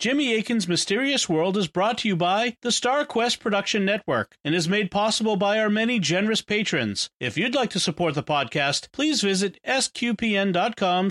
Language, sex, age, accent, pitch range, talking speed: English, male, 40-59, American, 160-230 Hz, 180 wpm